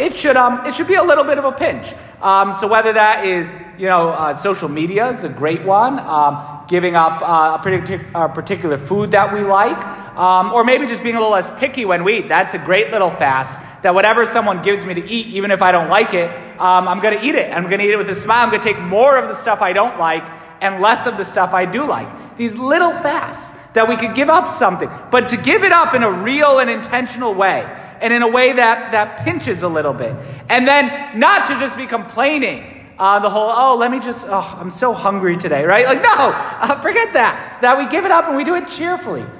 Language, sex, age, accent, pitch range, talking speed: English, male, 30-49, American, 180-255 Hz, 255 wpm